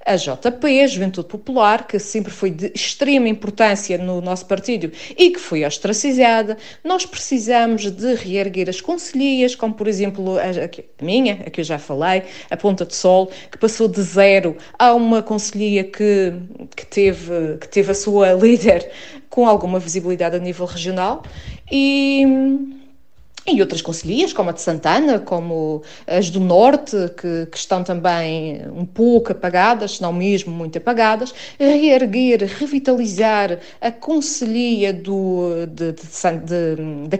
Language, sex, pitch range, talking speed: Portuguese, female, 175-230 Hz, 140 wpm